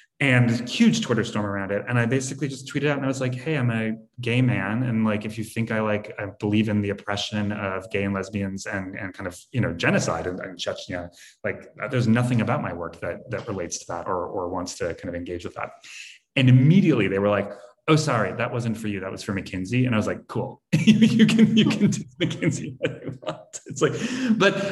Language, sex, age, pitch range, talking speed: English, male, 30-49, 105-140 Hz, 240 wpm